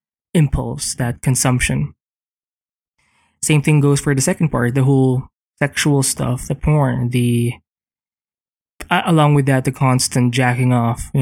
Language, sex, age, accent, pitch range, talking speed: English, male, 20-39, Filipino, 125-155 Hz, 135 wpm